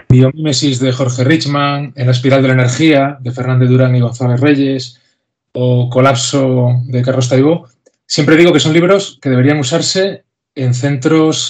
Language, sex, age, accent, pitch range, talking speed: Spanish, male, 20-39, Spanish, 125-150 Hz, 160 wpm